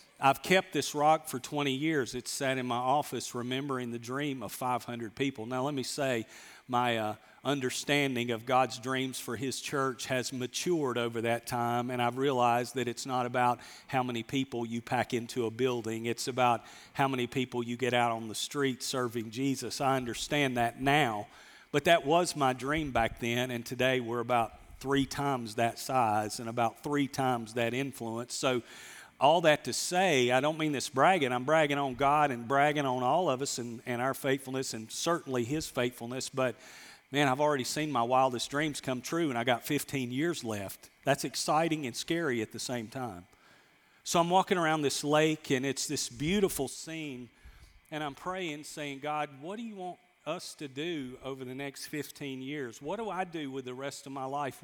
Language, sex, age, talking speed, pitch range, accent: English, male, 40-59, 195 wpm, 120-145 Hz, American